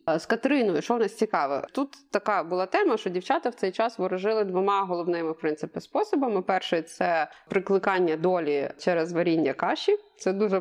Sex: female